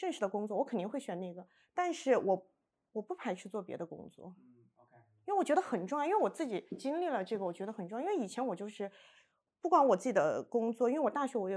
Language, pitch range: Chinese, 190-285 Hz